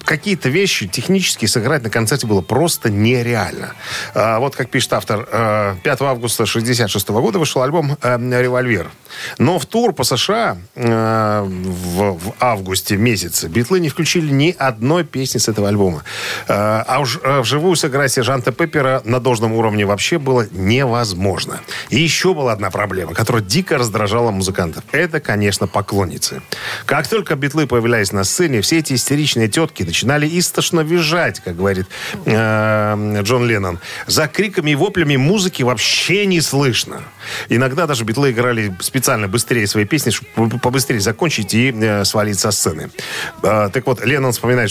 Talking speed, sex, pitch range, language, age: 150 wpm, male, 105-140 Hz, Russian, 40-59